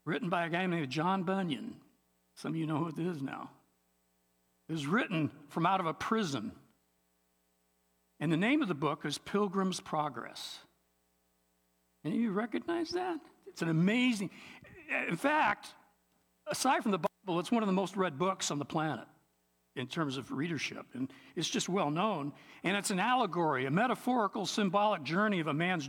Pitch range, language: 150-230 Hz, English